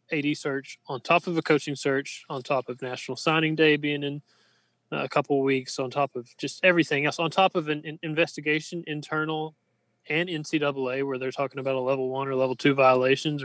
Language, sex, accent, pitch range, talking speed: English, male, American, 130-160 Hz, 195 wpm